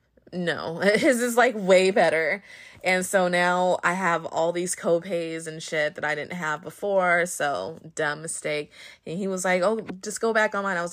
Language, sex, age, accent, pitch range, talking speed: English, female, 20-39, American, 155-190 Hz, 190 wpm